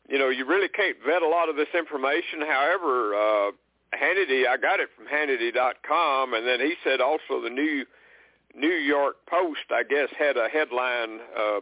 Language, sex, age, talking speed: English, male, 60-79, 180 wpm